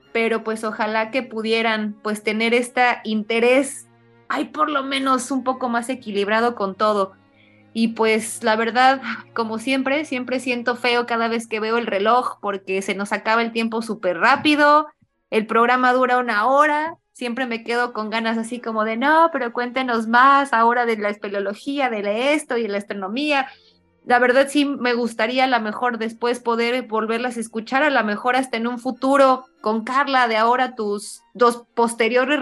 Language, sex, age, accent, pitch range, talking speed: Spanish, female, 20-39, Mexican, 220-265 Hz, 180 wpm